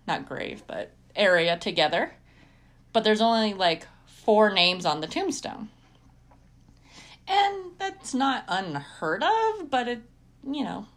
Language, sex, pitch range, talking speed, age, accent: English, female, 185-240 Hz, 125 wpm, 30-49, American